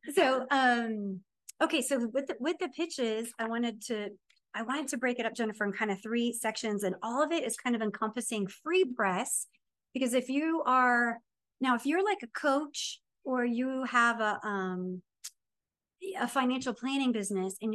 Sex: female